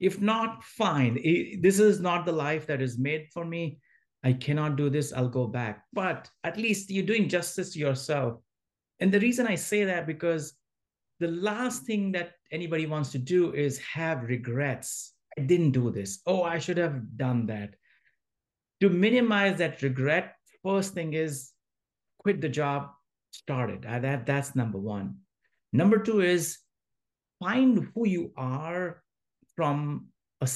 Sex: male